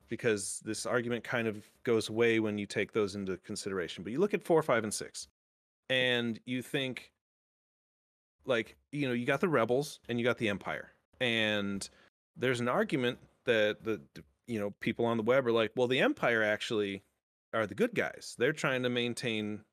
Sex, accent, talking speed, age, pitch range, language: male, American, 190 wpm, 30-49, 100-130 Hz, English